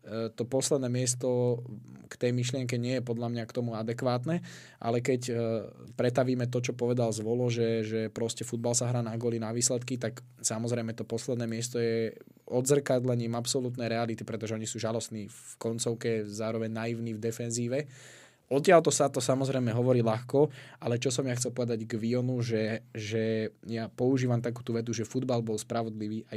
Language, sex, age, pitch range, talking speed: Slovak, male, 20-39, 110-125 Hz, 170 wpm